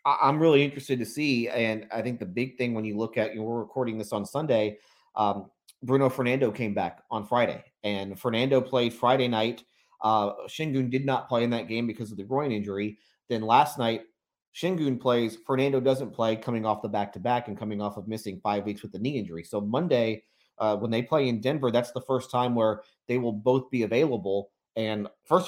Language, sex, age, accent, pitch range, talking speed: English, male, 30-49, American, 110-130 Hz, 215 wpm